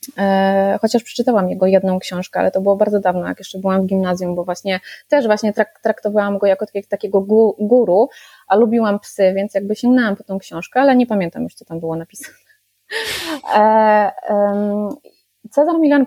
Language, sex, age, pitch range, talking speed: Polish, female, 20-39, 195-225 Hz, 160 wpm